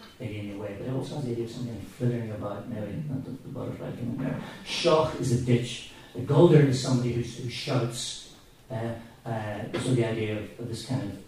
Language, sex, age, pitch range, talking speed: English, male, 40-59, 110-130 Hz, 225 wpm